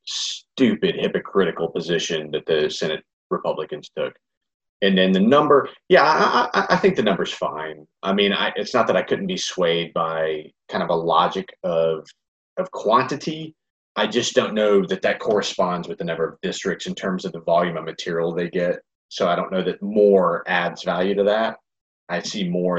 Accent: American